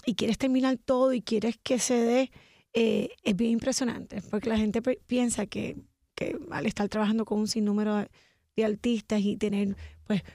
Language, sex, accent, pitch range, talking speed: Spanish, female, American, 215-255 Hz, 175 wpm